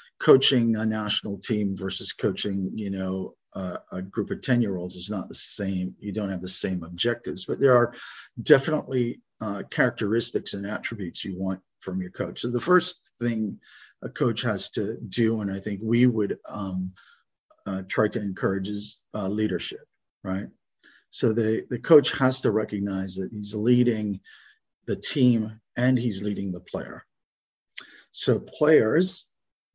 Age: 50-69